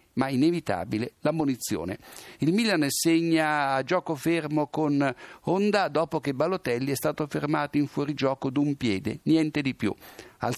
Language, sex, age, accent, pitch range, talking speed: Italian, male, 60-79, native, 125-160 Hz, 140 wpm